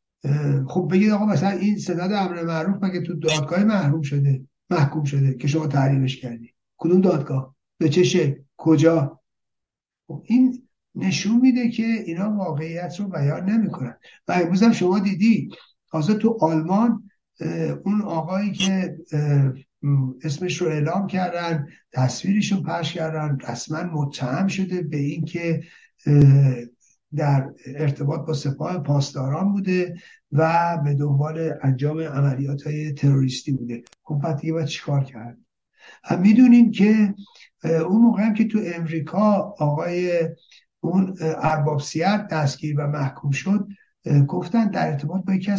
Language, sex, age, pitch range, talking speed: Persian, male, 60-79, 140-190 Hz, 120 wpm